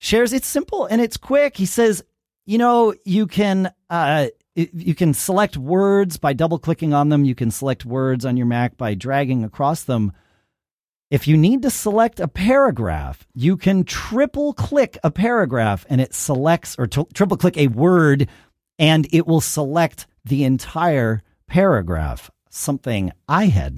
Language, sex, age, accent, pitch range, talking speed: English, male, 40-59, American, 120-195 Hz, 165 wpm